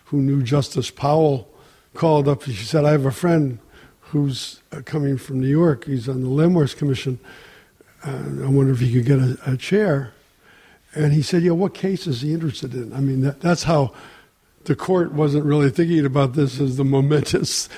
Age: 60-79